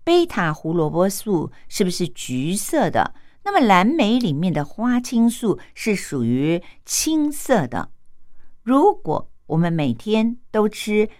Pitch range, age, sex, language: 150-235 Hz, 50-69, female, Japanese